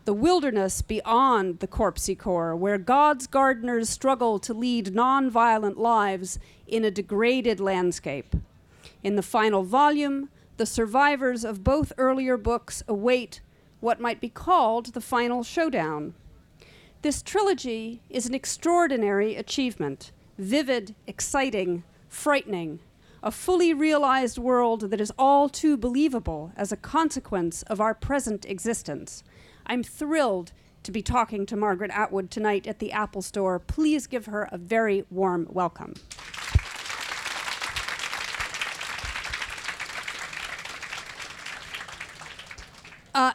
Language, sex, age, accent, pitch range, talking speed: English, female, 40-59, American, 200-265 Hz, 115 wpm